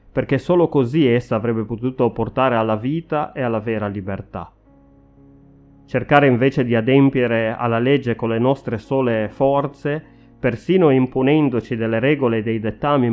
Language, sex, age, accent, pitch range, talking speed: Italian, male, 30-49, native, 110-140 Hz, 140 wpm